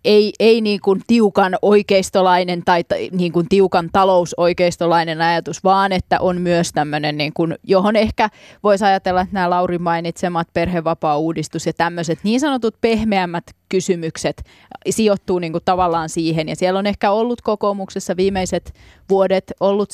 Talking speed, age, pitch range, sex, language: 145 wpm, 20-39, 165-190 Hz, female, Finnish